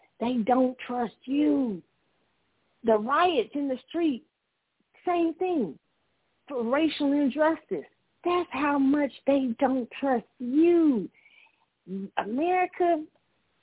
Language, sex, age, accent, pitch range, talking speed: English, female, 50-69, American, 190-265 Hz, 95 wpm